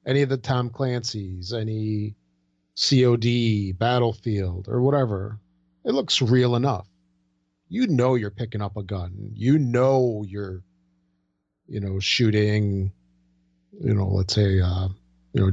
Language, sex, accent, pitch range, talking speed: English, male, American, 100-130 Hz, 130 wpm